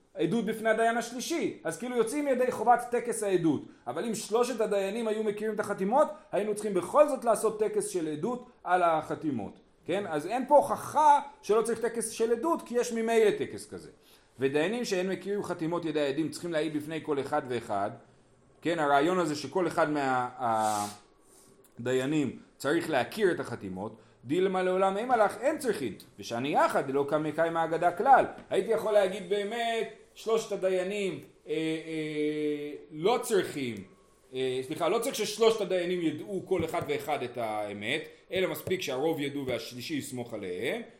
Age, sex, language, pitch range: 30-49, male, Hebrew, 150-220 Hz